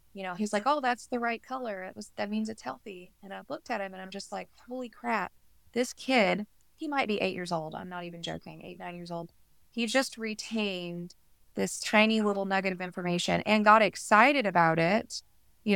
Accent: American